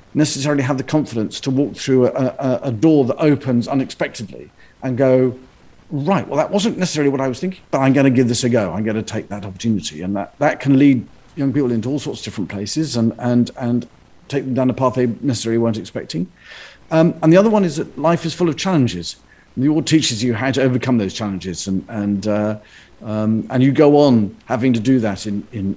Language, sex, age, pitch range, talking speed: Swahili, male, 50-69, 110-135 Hz, 230 wpm